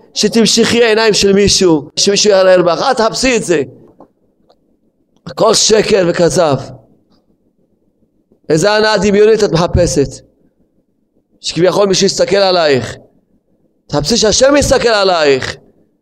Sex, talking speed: male, 100 wpm